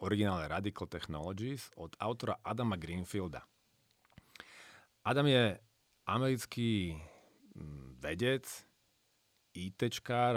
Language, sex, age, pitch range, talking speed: Slovak, male, 40-59, 80-120 Hz, 70 wpm